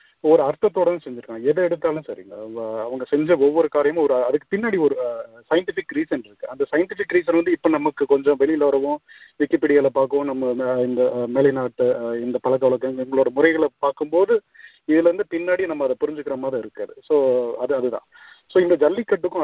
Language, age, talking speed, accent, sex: Tamil, 30-49, 155 wpm, native, male